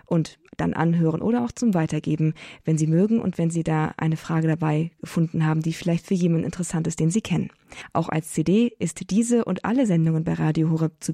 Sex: female